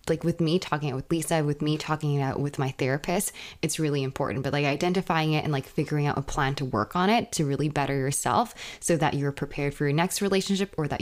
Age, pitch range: 20-39, 140-165 Hz